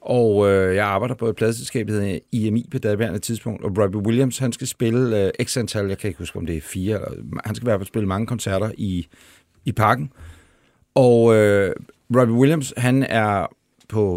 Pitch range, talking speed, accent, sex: 100-130 Hz, 210 wpm, native, male